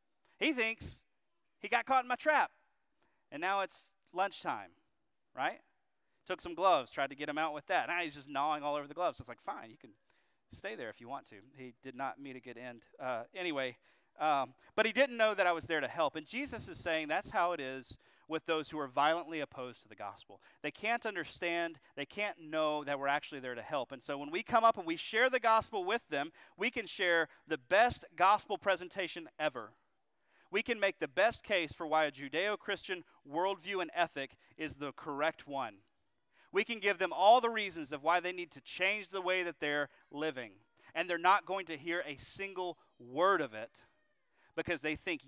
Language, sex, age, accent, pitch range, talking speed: English, male, 30-49, American, 145-195 Hz, 215 wpm